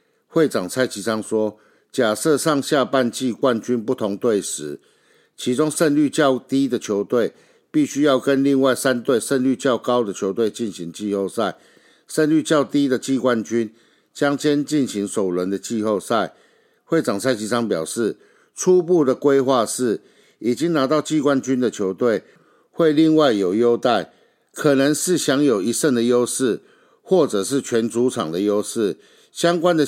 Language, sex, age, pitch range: Chinese, male, 60-79, 110-140 Hz